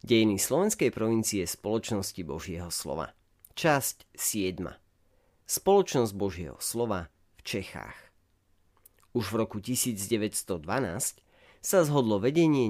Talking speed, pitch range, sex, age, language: 95 wpm, 95-125 Hz, male, 40-59, Slovak